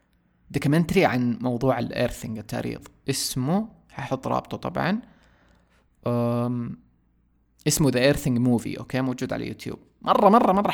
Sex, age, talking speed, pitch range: male, 20-39, 115 wpm, 120-150 Hz